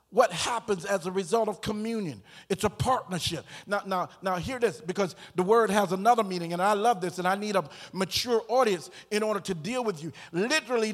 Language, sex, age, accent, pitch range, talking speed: English, male, 50-69, American, 180-240 Hz, 210 wpm